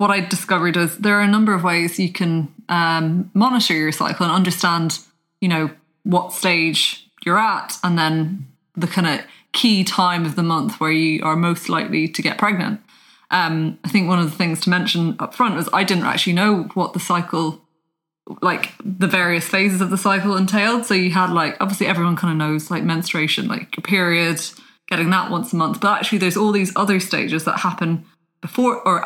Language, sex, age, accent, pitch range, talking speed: English, female, 20-39, British, 165-195 Hz, 205 wpm